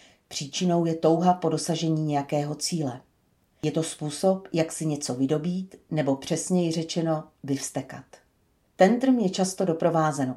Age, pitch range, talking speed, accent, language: 40-59, 150-185 Hz, 125 wpm, native, Czech